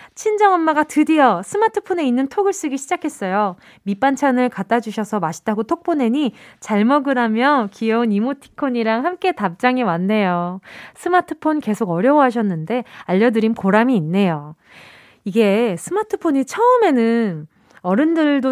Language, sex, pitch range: Korean, female, 205-295 Hz